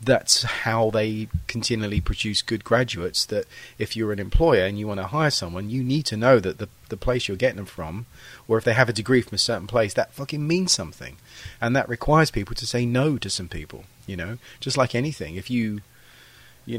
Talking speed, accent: 220 wpm, British